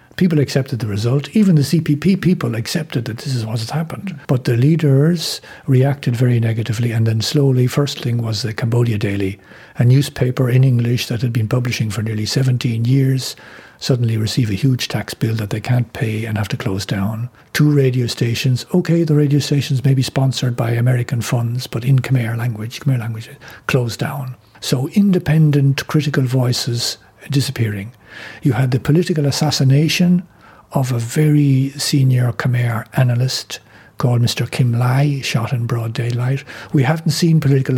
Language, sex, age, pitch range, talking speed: English, male, 60-79, 120-140 Hz, 170 wpm